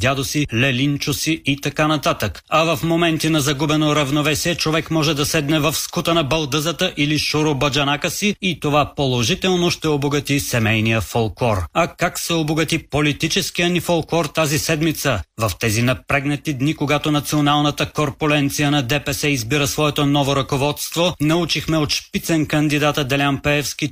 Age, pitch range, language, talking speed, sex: 30-49, 140-160 Hz, Bulgarian, 150 wpm, male